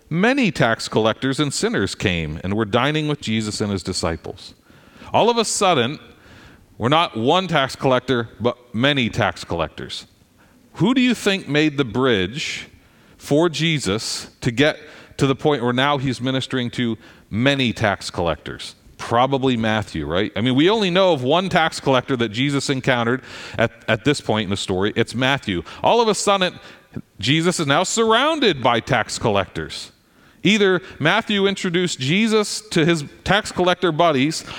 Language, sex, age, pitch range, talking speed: English, male, 40-59, 115-165 Hz, 160 wpm